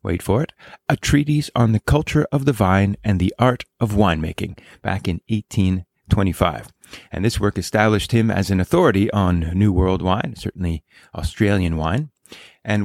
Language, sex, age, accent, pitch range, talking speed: English, male, 30-49, American, 95-120 Hz, 165 wpm